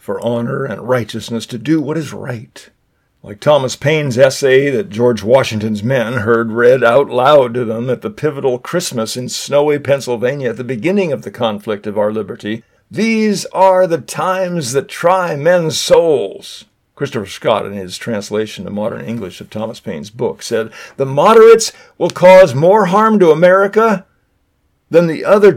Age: 50-69